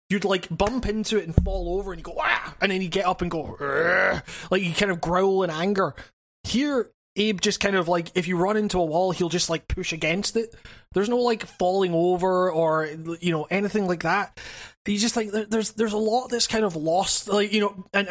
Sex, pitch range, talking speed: male, 170-205 Hz, 235 wpm